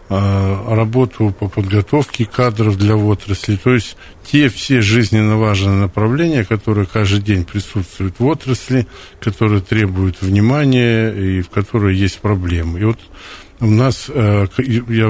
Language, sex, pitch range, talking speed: Russian, male, 95-115 Hz, 125 wpm